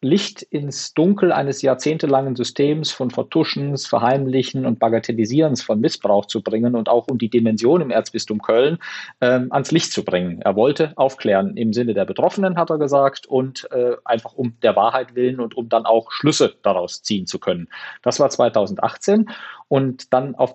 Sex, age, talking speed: male, 40-59, 175 wpm